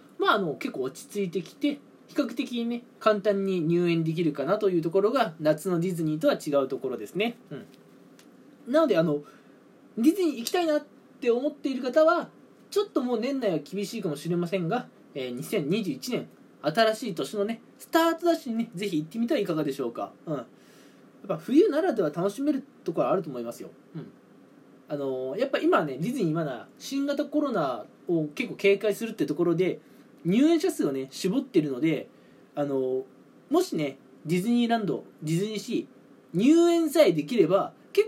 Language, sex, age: Japanese, male, 20-39